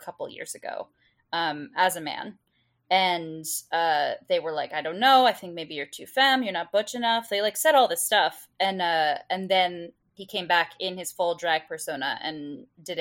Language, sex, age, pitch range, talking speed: English, female, 20-39, 170-225 Hz, 210 wpm